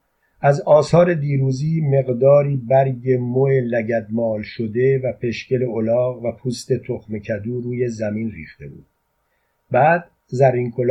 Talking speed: 115 wpm